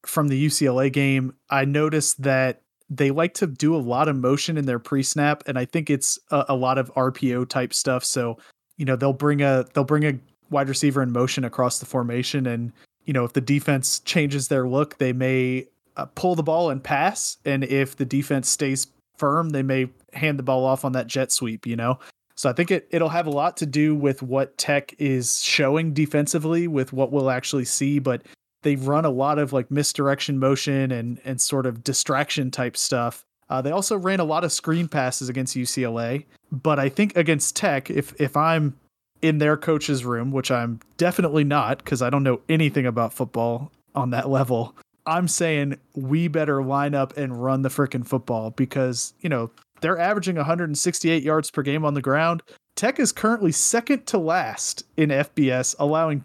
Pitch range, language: 130-155 Hz, English